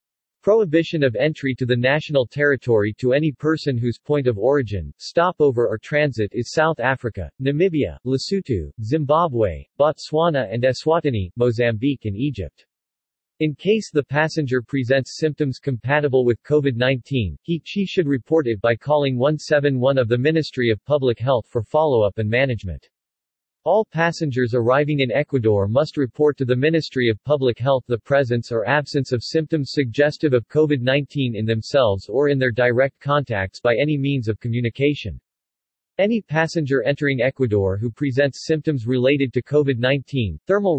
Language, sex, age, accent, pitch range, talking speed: English, male, 40-59, American, 120-150 Hz, 150 wpm